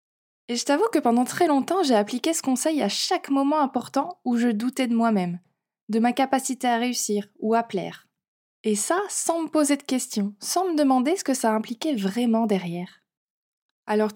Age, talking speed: 20-39, 190 wpm